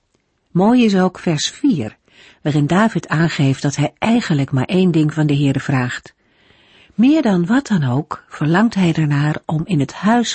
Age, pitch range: 50-69, 140-210 Hz